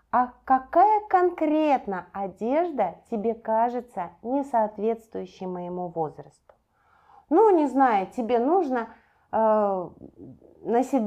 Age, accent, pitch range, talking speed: 30-49, native, 180-270 Hz, 90 wpm